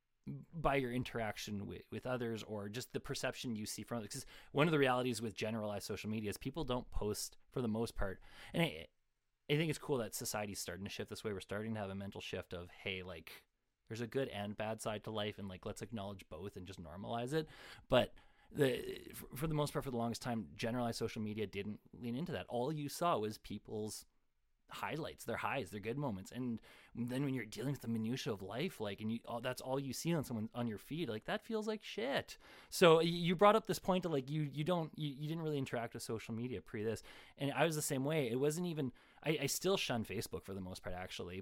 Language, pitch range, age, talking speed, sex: English, 105-145 Hz, 30-49, 240 wpm, male